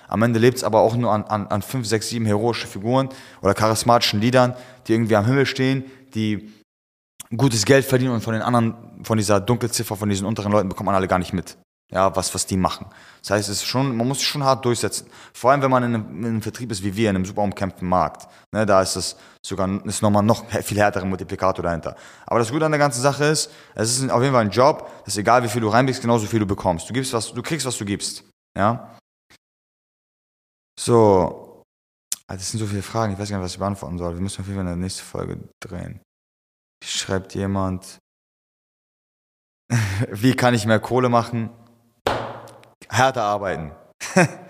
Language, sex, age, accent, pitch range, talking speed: German, male, 20-39, German, 95-125 Hz, 215 wpm